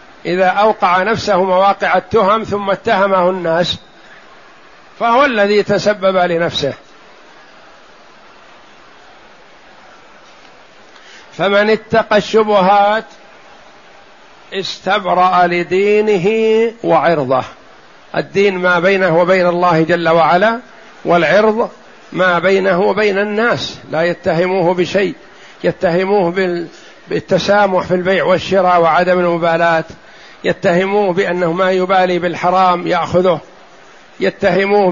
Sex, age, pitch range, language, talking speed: male, 60-79, 180-200 Hz, Arabic, 80 wpm